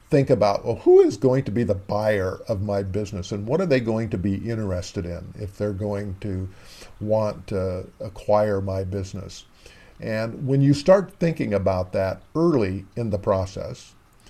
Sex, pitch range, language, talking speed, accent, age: male, 95-115 Hz, English, 170 wpm, American, 50-69